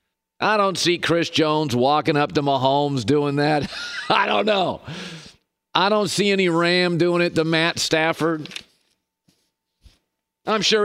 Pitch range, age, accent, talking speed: 140-180 Hz, 50-69, American, 145 wpm